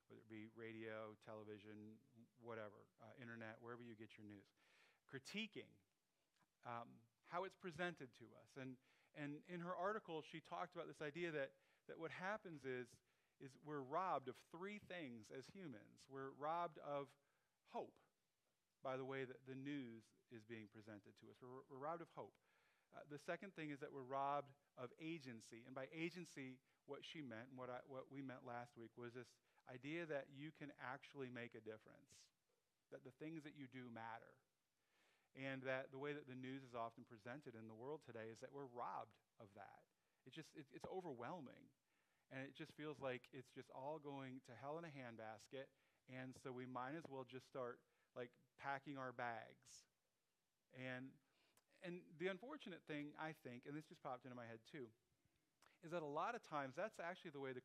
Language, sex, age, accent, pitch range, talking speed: English, male, 40-59, American, 120-150 Hz, 185 wpm